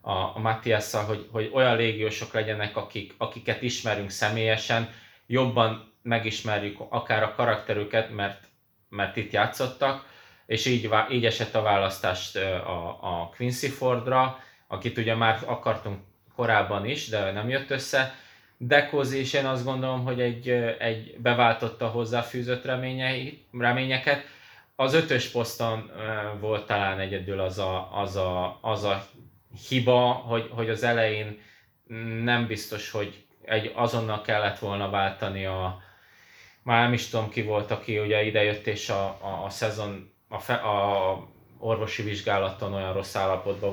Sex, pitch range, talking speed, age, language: male, 105-120 Hz, 135 wpm, 20-39, Hungarian